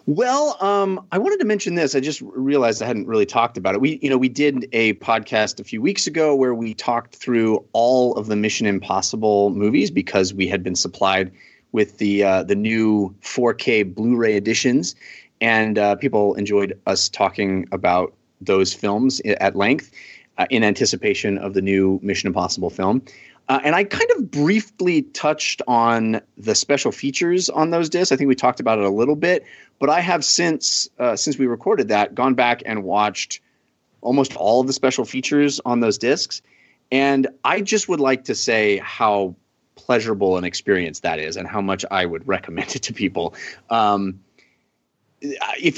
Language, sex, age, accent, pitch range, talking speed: English, male, 30-49, American, 100-140 Hz, 180 wpm